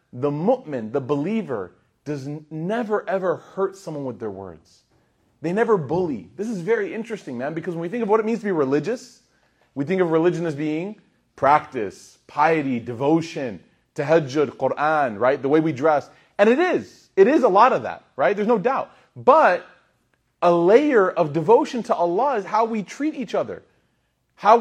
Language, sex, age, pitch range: English, male, 30-49, 150-225 Hz